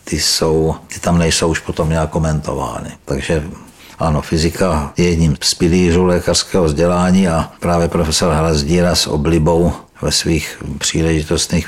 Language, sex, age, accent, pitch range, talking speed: Czech, male, 60-79, native, 80-85 Hz, 140 wpm